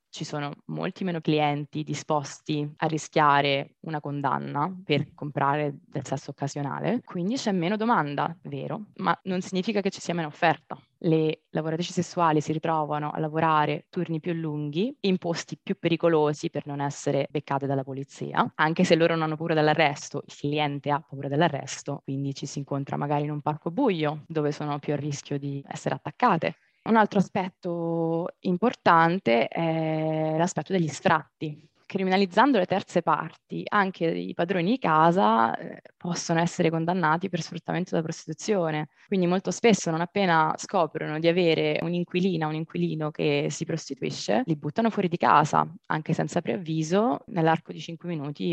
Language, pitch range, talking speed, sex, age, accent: Italian, 150-175 Hz, 160 wpm, female, 20-39, native